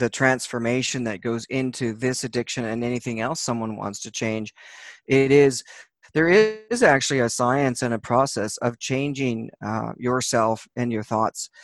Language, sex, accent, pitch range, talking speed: English, male, American, 120-140 Hz, 160 wpm